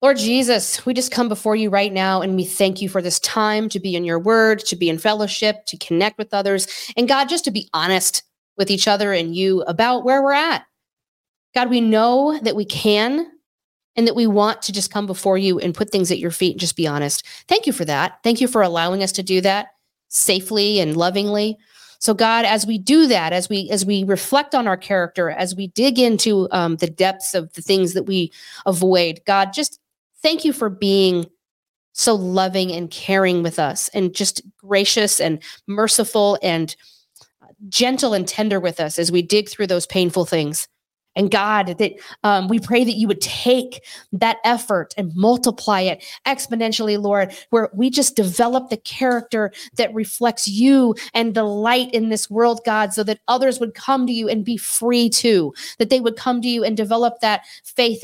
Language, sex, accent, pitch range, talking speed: English, female, American, 190-235 Hz, 200 wpm